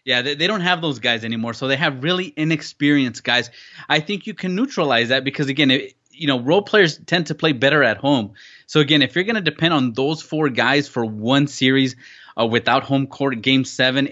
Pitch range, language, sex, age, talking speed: 120-145 Hz, English, male, 20-39, 215 wpm